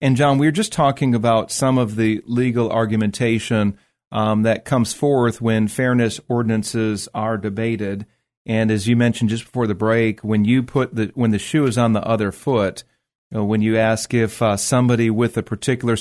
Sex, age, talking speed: male, 40-59, 200 wpm